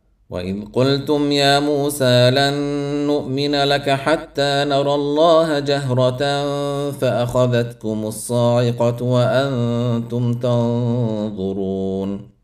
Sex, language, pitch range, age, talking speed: male, Arabic, 125-145 Hz, 50-69, 70 wpm